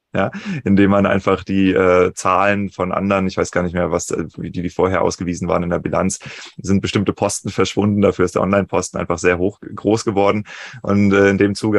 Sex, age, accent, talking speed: male, 20-39, German, 210 wpm